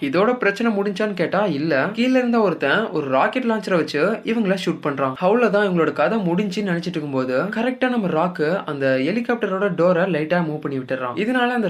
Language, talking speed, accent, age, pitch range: Tamil, 170 wpm, native, 20-39, 150-220 Hz